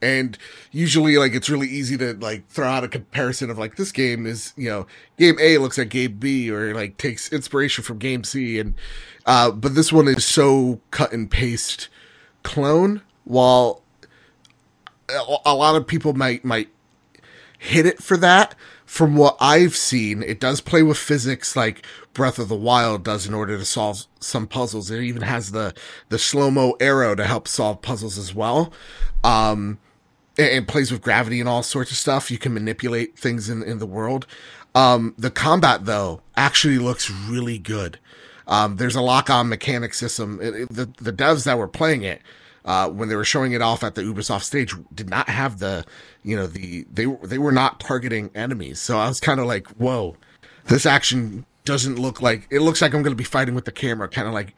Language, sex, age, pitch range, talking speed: English, male, 30-49, 110-135 Hz, 200 wpm